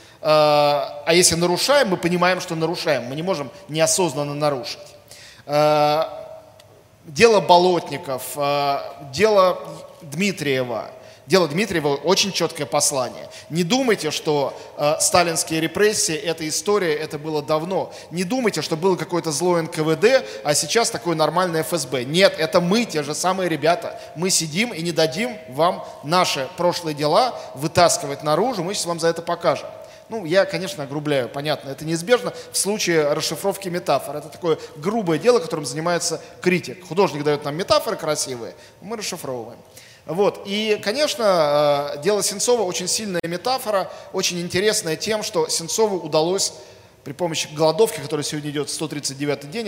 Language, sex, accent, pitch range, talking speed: Russian, male, native, 150-190 Hz, 140 wpm